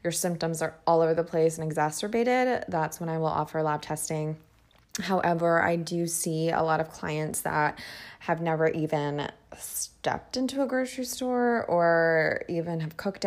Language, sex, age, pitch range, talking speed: English, female, 20-39, 160-195 Hz, 165 wpm